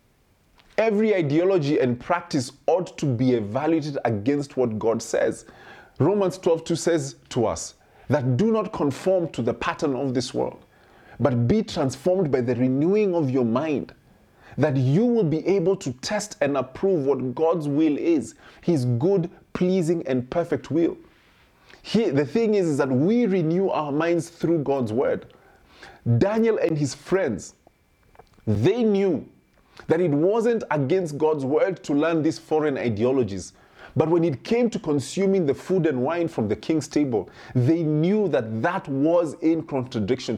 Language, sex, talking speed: English, male, 155 wpm